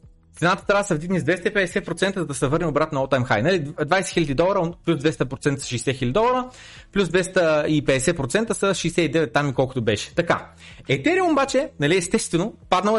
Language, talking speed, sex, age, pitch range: Bulgarian, 165 wpm, male, 30-49, 135-200 Hz